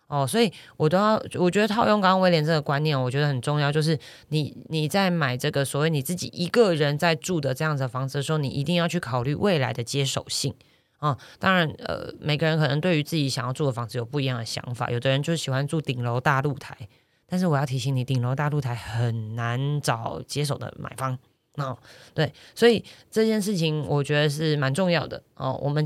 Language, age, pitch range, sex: Chinese, 20-39, 135-165 Hz, female